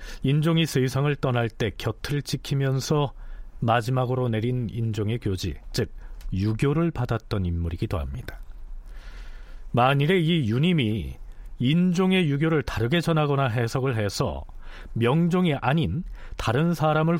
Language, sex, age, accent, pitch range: Korean, male, 40-59, native, 95-160 Hz